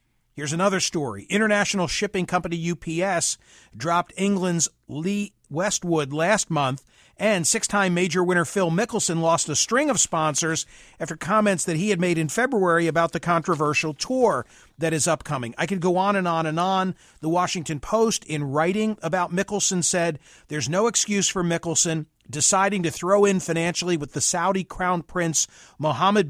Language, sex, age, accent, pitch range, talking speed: English, male, 50-69, American, 160-195 Hz, 160 wpm